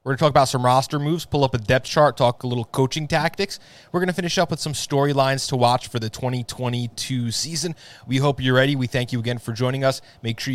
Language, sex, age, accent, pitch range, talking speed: English, male, 20-39, American, 115-140 Hz, 255 wpm